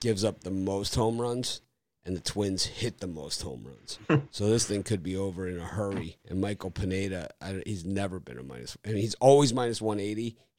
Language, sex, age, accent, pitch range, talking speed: English, male, 30-49, American, 90-115 Hz, 210 wpm